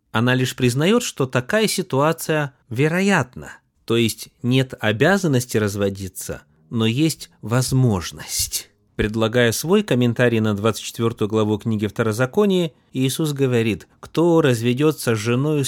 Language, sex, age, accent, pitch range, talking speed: Russian, male, 30-49, native, 115-140 Hz, 110 wpm